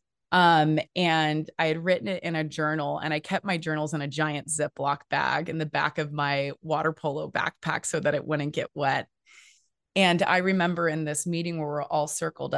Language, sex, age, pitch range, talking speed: English, female, 20-39, 155-190 Hz, 205 wpm